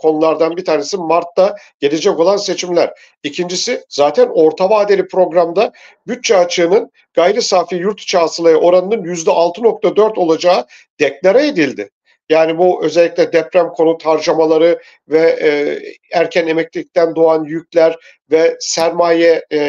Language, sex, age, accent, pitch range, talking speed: Turkish, male, 50-69, native, 160-230 Hz, 120 wpm